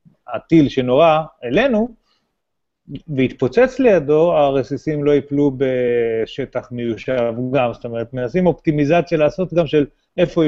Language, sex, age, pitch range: Hebrew, male, 30-49, 125-165 Hz